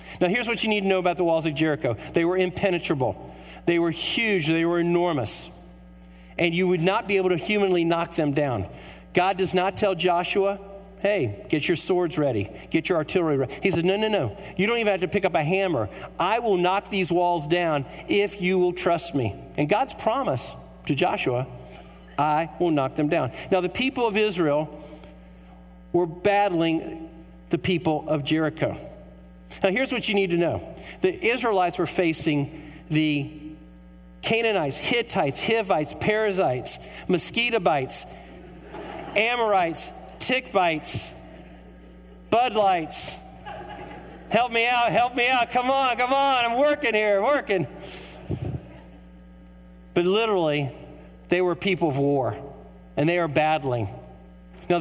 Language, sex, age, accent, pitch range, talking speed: English, male, 50-69, American, 140-195 Hz, 155 wpm